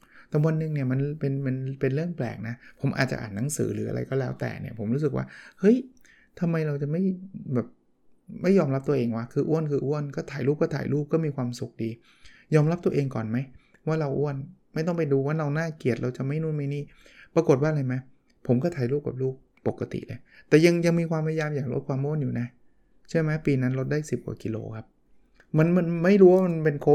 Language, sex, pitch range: Thai, male, 125-155 Hz